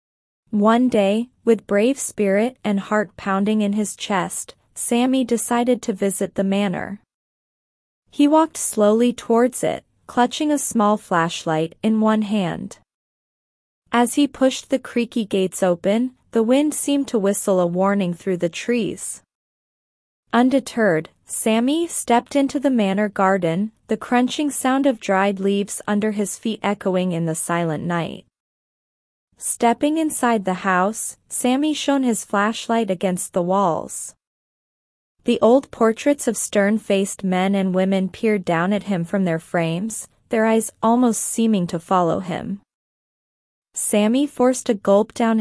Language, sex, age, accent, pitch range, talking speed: English, female, 20-39, American, 195-245 Hz, 140 wpm